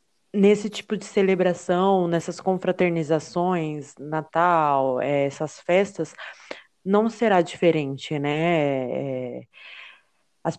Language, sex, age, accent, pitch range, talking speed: Portuguese, female, 20-39, Brazilian, 155-195 Hz, 80 wpm